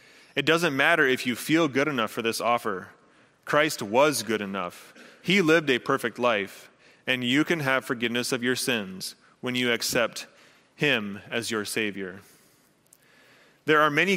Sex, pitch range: male, 110-145 Hz